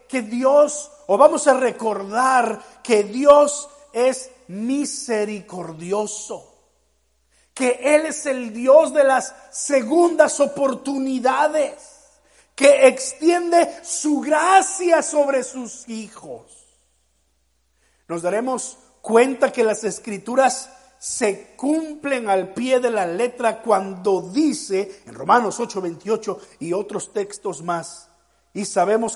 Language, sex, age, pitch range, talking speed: Spanish, male, 50-69, 195-290 Hz, 105 wpm